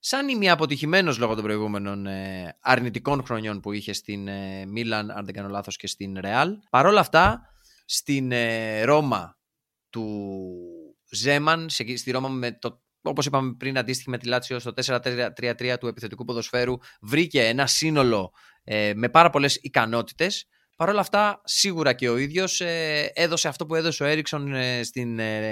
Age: 20-39